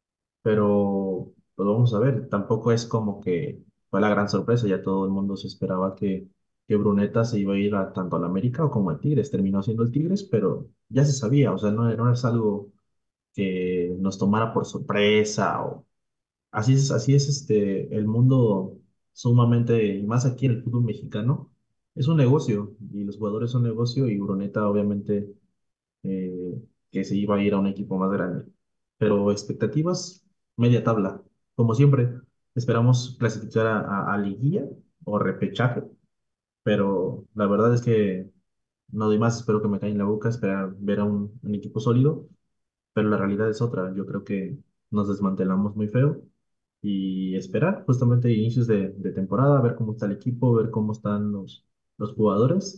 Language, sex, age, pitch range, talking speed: Spanish, male, 20-39, 100-120 Hz, 180 wpm